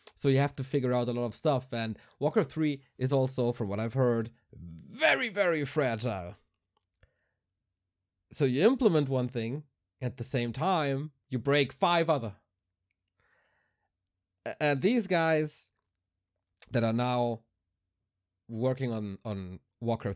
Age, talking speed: 20-39, 135 wpm